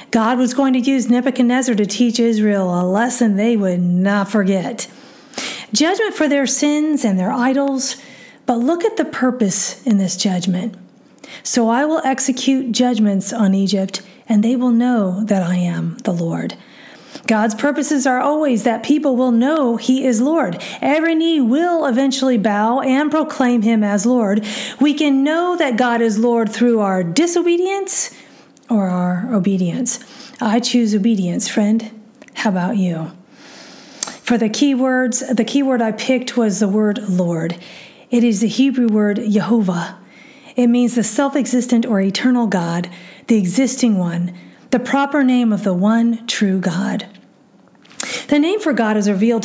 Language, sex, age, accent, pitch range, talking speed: English, female, 40-59, American, 205-265 Hz, 160 wpm